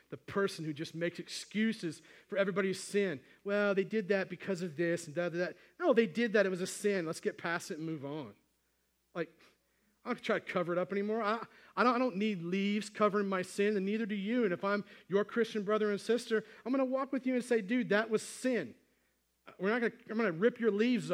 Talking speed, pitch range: 245 wpm, 170-225 Hz